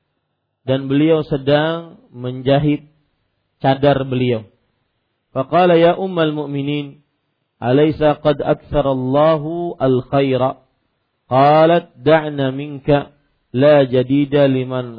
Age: 40-59